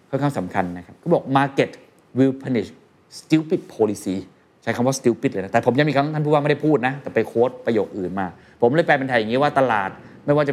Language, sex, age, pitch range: Thai, male, 20-39, 110-145 Hz